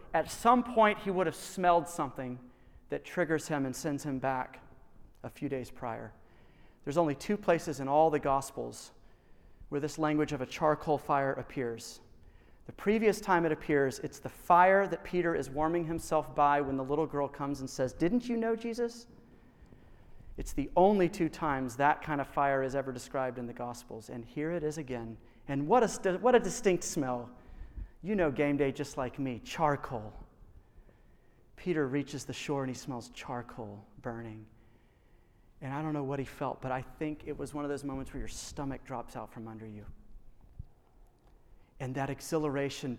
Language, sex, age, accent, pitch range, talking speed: English, male, 40-59, American, 130-160 Hz, 185 wpm